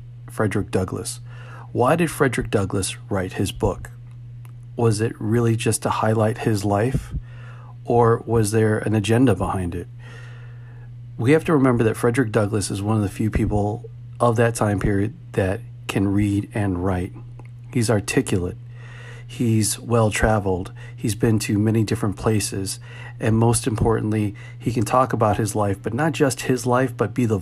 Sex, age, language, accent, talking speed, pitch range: male, 40-59, English, American, 160 wpm, 105-120 Hz